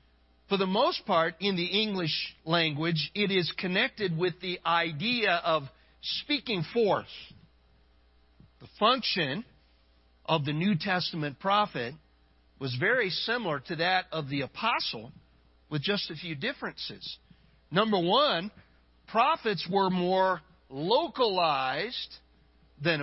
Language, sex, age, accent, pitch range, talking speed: English, male, 50-69, American, 135-200 Hz, 115 wpm